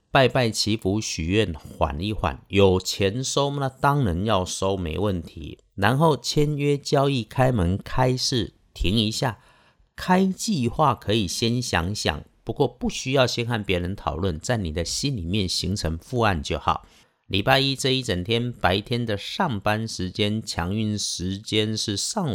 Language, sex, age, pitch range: Chinese, male, 50-69, 85-120 Hz